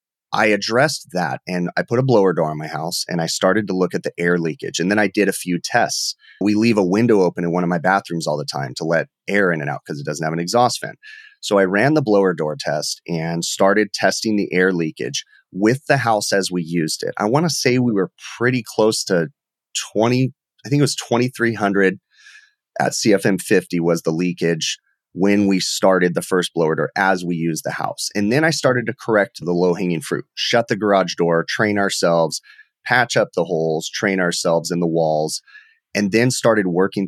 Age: 30-49